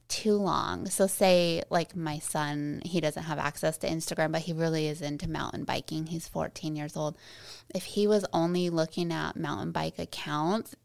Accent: American